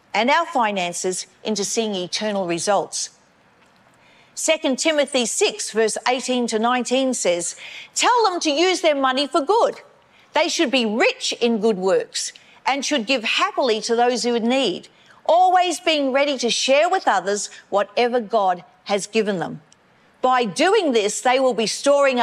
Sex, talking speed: female, 155 wpm